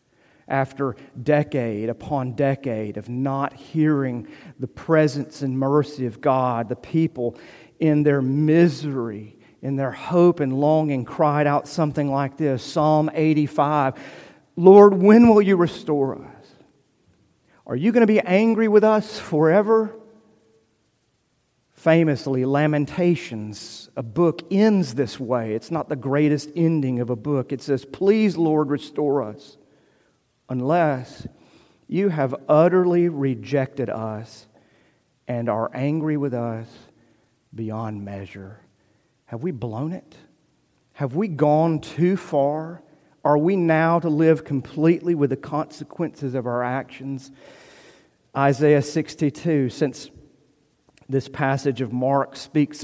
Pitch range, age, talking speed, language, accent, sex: 130-160 Hz, 40-59, 125 wpm, English, American, male